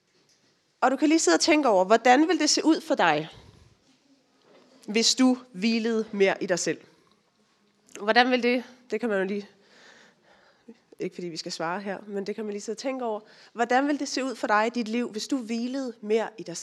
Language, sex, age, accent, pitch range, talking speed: Danish, female, 30-49, native, 205-270 Hz, 220 wpm